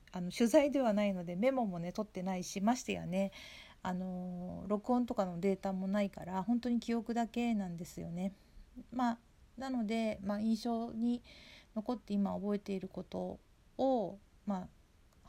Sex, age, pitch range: female, 50-69, 185-230 Hz